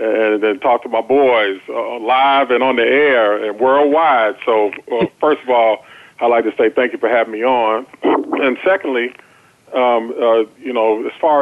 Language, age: English, 40-59